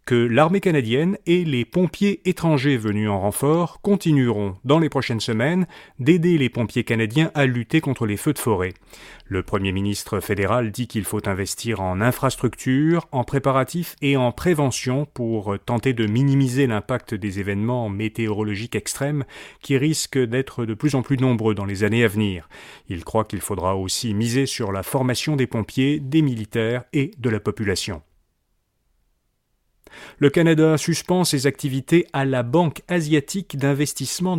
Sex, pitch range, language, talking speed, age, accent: male, 110-155 Hz, French, 155 wpm, 30-49, French